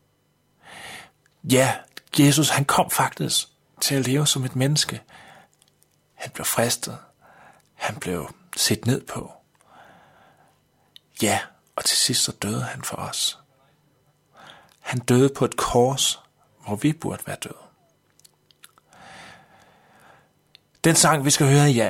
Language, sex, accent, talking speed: Danish, male, native, 120 wpm